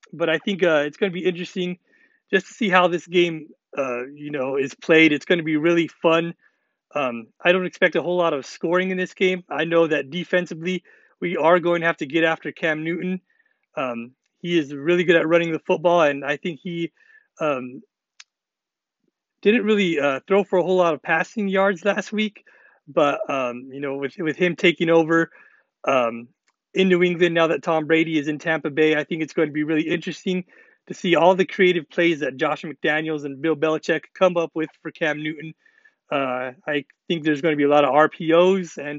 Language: English